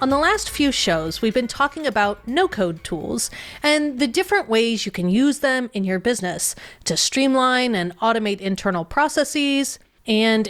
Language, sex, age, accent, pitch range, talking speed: English, female, 30-49, American, 195-270 Hz, 170 wpm